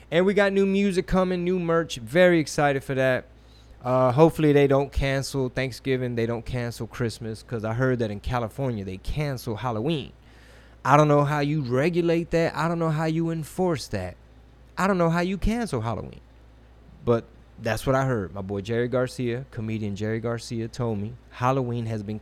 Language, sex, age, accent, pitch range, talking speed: English, male, 20-39, American, 110-145 Hz, 185 wpm